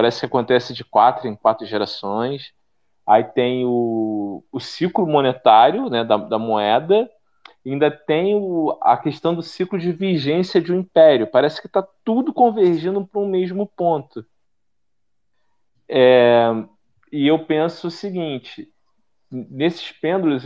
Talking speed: 130 wpm